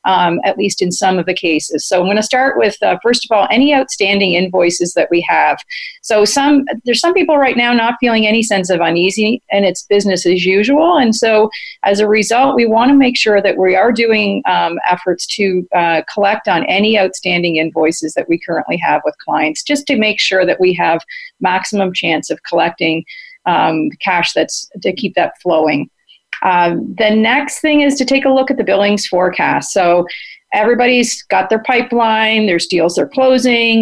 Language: English